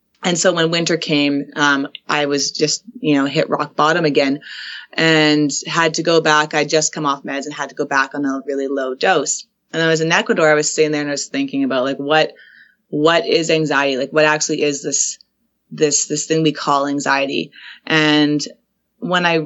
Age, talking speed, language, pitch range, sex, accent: 20-39, 210 wpm, English, 150-175 Hz, female, American